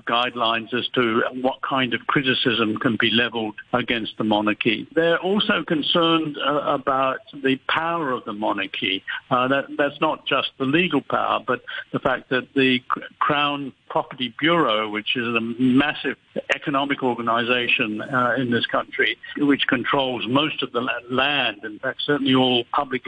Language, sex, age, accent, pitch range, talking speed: English, male, 60-79, British, 125-150 Hz, 155 wpm